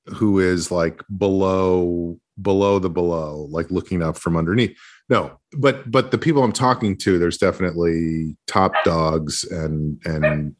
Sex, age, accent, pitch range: male, 40-59, American, 90-125 Hz